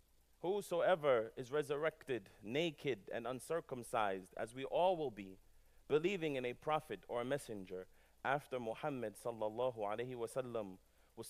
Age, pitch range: 30-49, 110-145 Hz